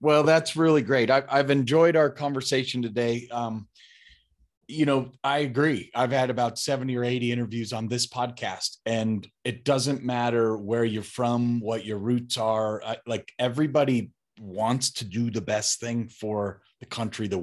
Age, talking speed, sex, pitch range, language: 30-49, 160 wpm, male, 105-130 Hz, English